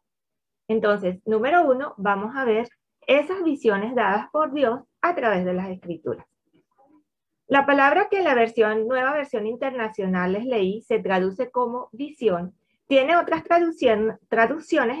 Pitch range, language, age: 195-275 Hz, Spanish, 30-49